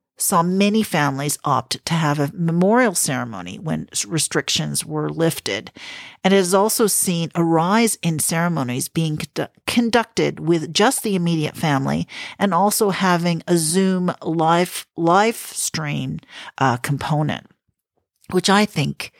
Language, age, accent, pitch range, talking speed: English, 50-69, American, 150-190 Hz, 130 wpm